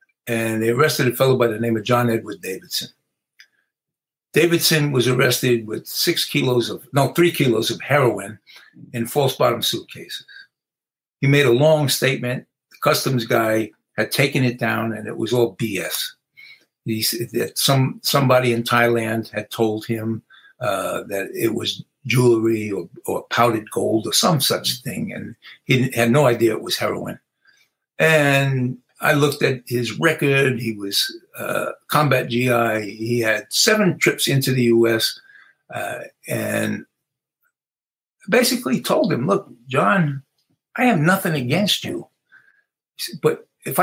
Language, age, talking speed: English, 60-79, 150 wpm